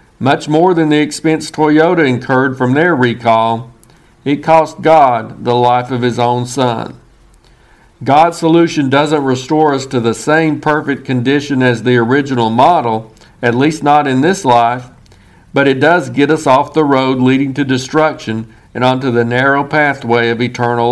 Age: 50-69